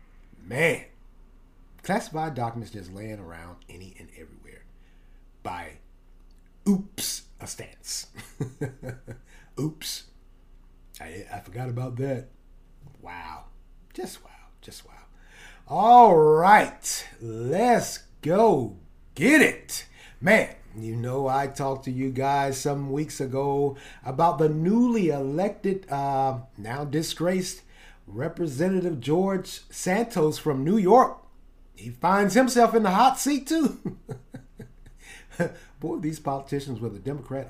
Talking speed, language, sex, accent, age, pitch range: 105 wpm, English, male, American, 50-69, 120-160 Hz